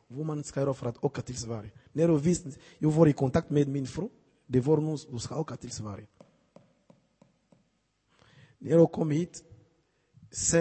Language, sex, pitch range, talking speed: Swedish, male, 120-160 Hz, 165 wpm